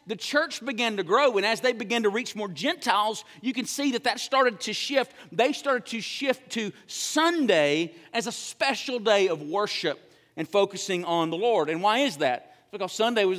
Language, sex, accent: English, male, American